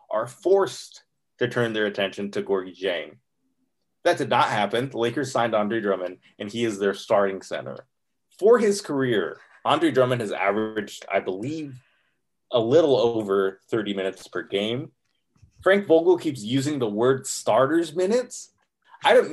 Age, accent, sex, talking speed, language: 30-49, American, male, 155 wpm, English